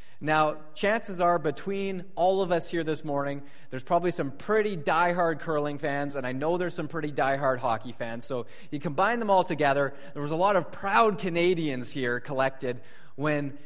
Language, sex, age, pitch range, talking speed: English, male, 30-49, 145-200 Hz, 185 wpm